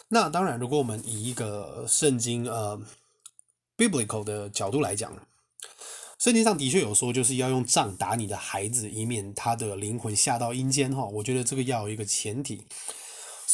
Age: 20-39